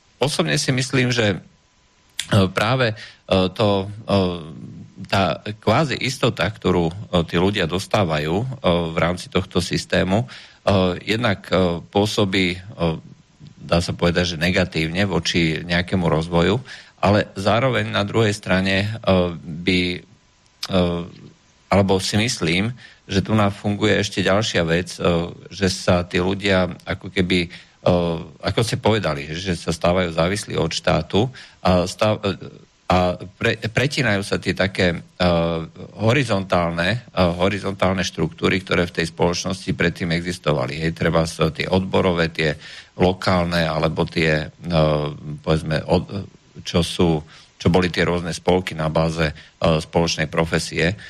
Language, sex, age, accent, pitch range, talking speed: Czech, male, 50-69, Slovak, 85-100 Hz, 120 wpm